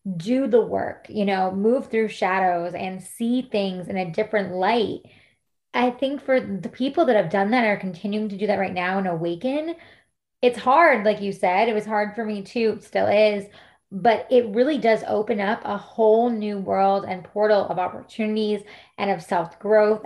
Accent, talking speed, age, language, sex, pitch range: American, 190 wpm, 20-39, English, female, 195-235 Hz